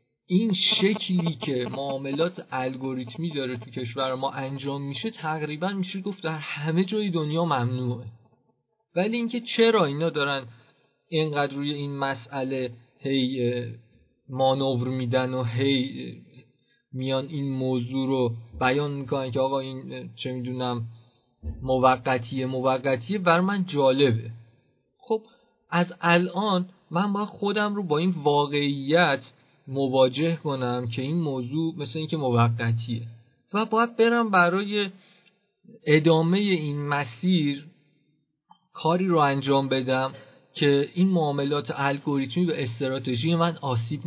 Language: Persian